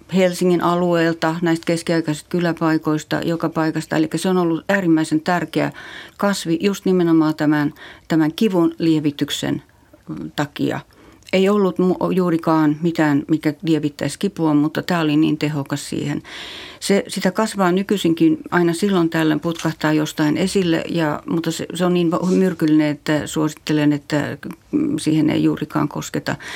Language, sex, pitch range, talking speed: Finnish, female, 150-180 Hz, 130 wpm